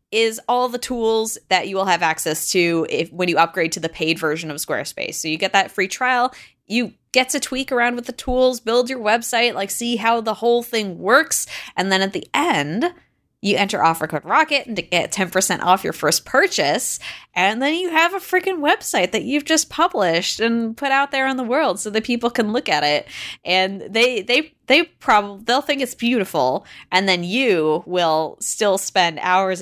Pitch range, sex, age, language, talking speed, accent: 180-265 Hz, female, 20-39, English, 210 wpm, American